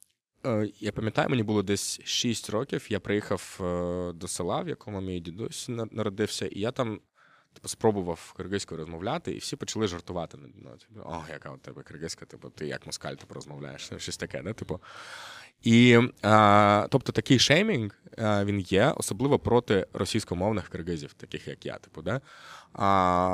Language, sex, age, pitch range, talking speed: Ukrainian, male, 20-39, 90-110 Hz, 160 wpm